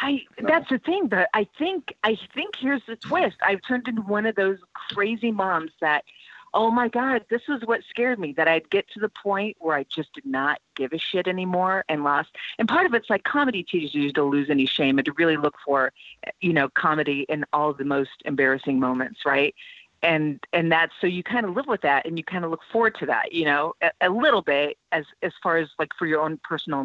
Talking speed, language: 240 wpm, English